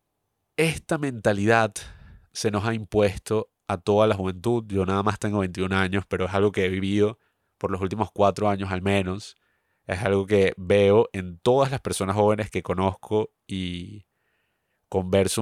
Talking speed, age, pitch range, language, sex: 165 wpm, 30-49, 95-120 Hz, Spanish, male